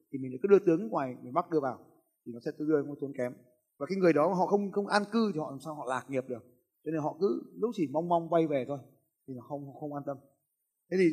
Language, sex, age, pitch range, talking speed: Vietnamese, male, 20-39, 130-165 Hz, 285 wpm